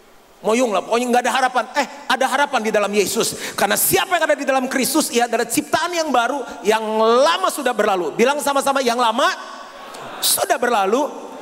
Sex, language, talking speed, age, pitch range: male, Indonesian, 180 wpm, 40-59, 175-240 Hz